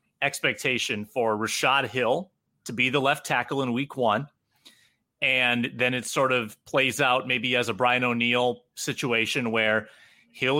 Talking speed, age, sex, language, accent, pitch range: 155 wpm, 30-49, male, English, American, 125-155 Hz